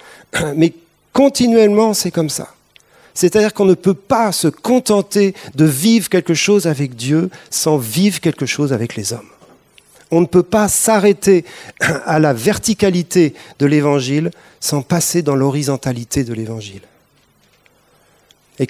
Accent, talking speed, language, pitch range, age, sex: French, 135 wpm, French, 130-175 Hz, 40-59, male